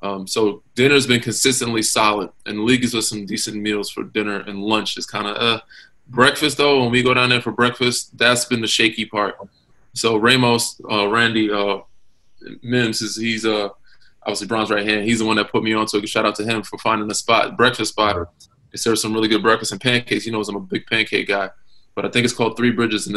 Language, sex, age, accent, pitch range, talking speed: English, male, 20-39, American, 105-120 Hz, 235 wpm